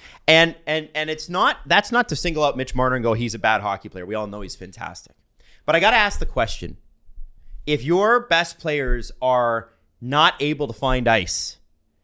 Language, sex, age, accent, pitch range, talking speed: English, male, 30-49, American, 115-160 Hz, 205 wpm